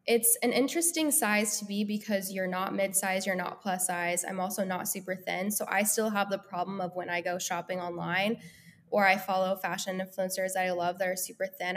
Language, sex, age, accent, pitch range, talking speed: English, female, 10-29, American, 175-200 Hz, 220 wpm